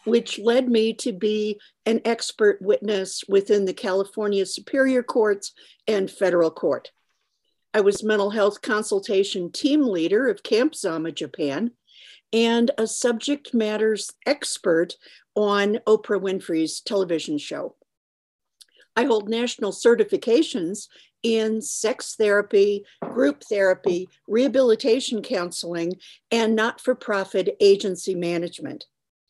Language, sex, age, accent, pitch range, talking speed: English, female, 50-69, American, 195-240 Hz, 105 wpm